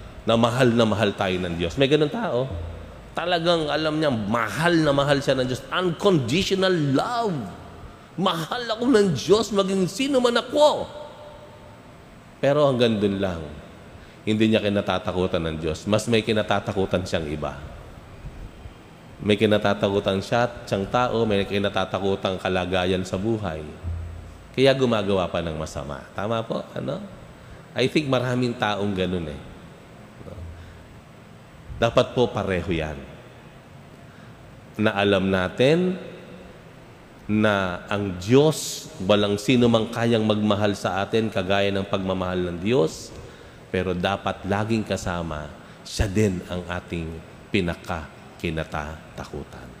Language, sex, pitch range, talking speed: Filipino, male, 90-125 Hz, 115 wpm